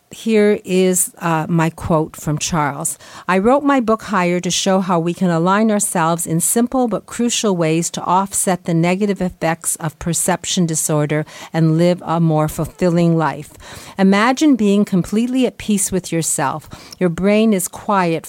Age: 50-69